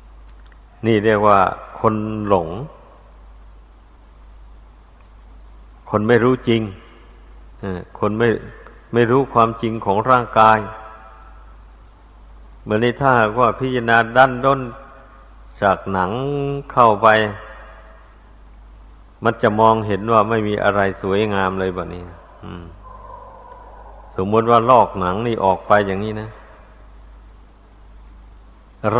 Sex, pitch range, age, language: male, 100-115 Hz, 60-79, Thai